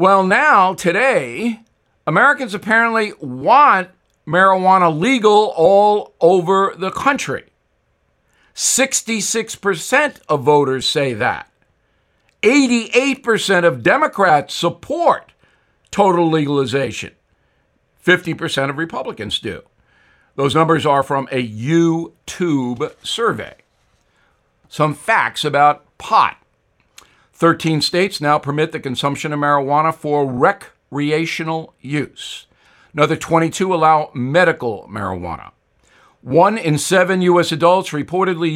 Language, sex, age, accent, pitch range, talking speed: English, male, 60-79, American, 150-190 Hz, 95 wpm